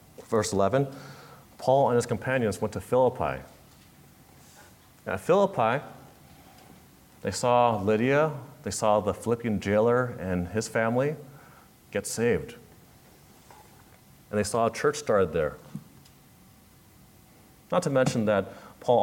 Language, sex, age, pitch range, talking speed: English, male, 30-49, 105-135 Hz, 115 wpm